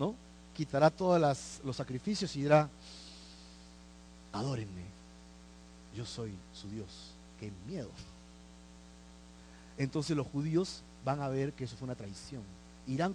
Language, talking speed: Spanish, 115 wpm